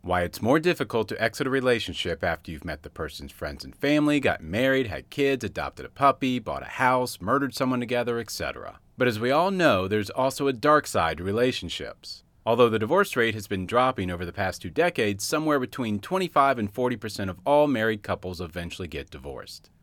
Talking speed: 205 wpm